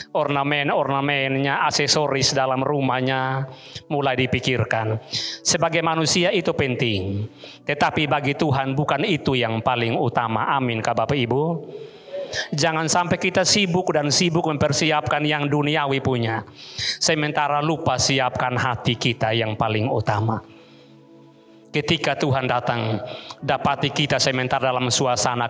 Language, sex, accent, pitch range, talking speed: Indonesian, male, native, 120-150 Hz, 115 wpm